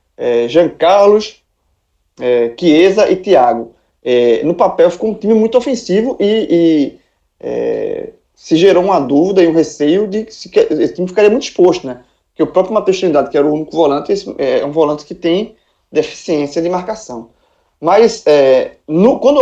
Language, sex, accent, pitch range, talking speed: Portuguese, male, Brazilian, 145-225 Hz, 155 wpm